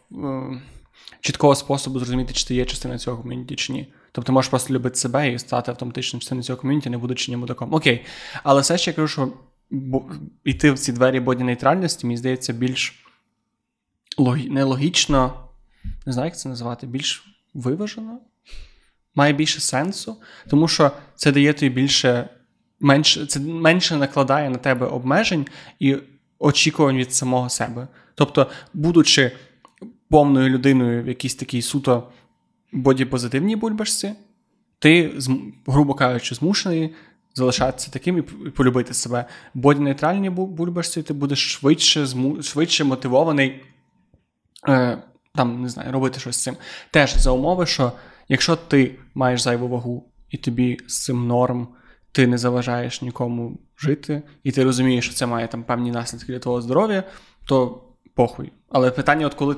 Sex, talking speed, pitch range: male, 145 wpm, 125-150 Hz